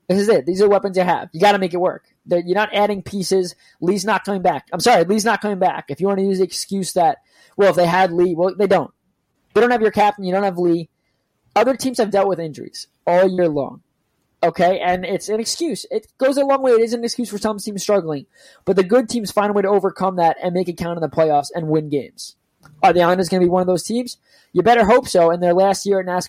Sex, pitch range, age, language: male, 175-215 Hz, 20-39, English